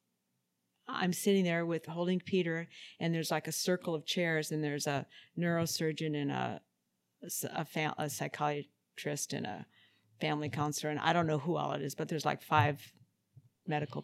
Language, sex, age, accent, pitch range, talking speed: English, female, 50-69, American, 145-180 Hz, 170 wpm